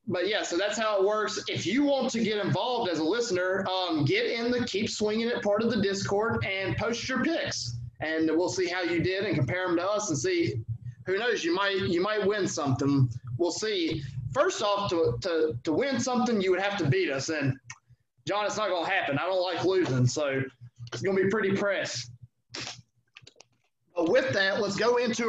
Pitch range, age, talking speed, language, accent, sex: 145-205 Hz, 20-39, 210 wpm, English, American, male